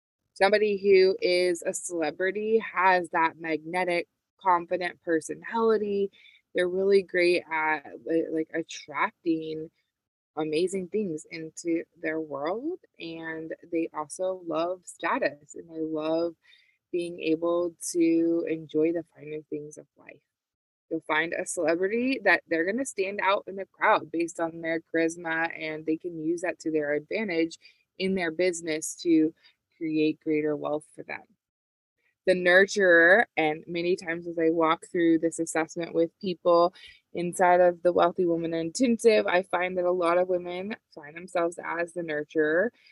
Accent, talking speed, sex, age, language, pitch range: American, 145 wpm, female, 20-39, English, 160-190 Hz